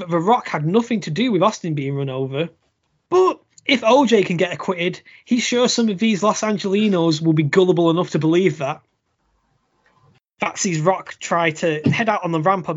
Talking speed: 195 wpm